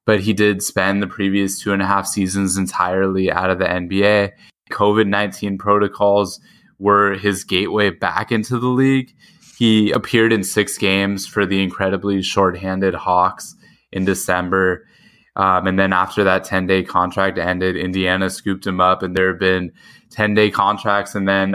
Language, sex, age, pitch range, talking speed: English, male, 10-29, 95-105 Hz, 160 wpm